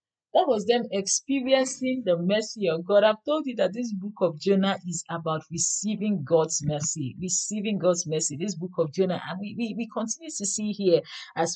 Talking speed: 190 wpm